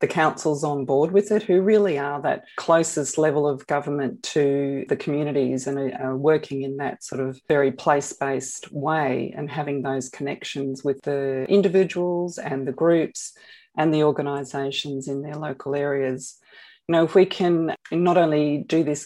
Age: 40-59